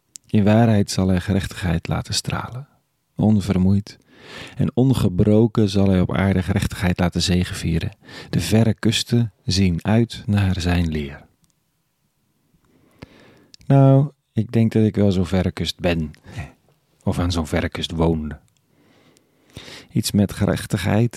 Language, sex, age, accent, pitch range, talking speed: Dutch, male, 40-59, Dutch, 95-110 Hz, 125 wpm